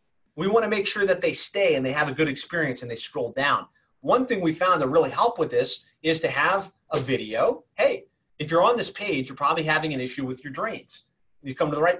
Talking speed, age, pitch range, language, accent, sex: 250 wpm, 30-49, 140-195 Hz, English, American, male